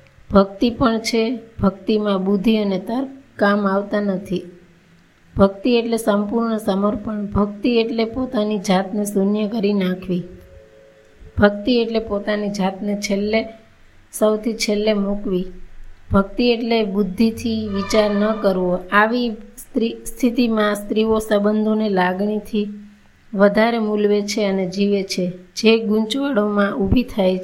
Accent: native